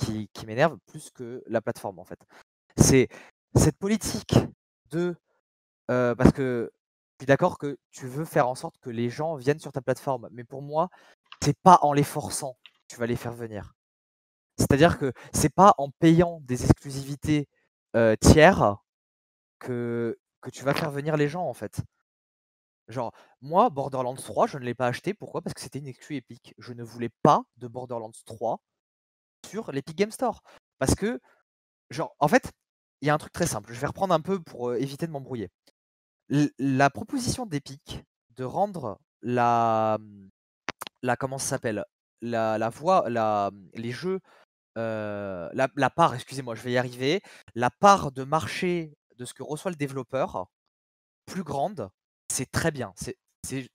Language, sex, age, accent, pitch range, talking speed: French, male, 20-39, French, 115-150 Hz, 175 wpm